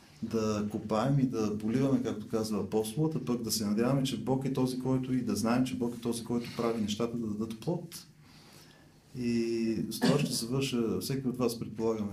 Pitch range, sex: 105-125 Hz, male